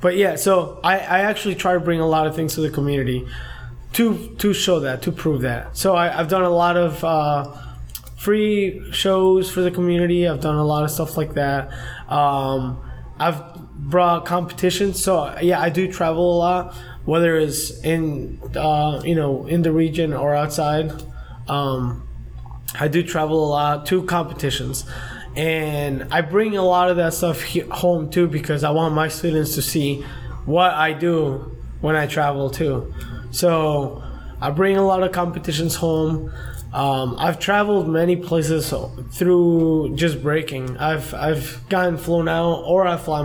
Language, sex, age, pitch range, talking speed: English, male, 20-39, 140-175 Hz, 170 wpm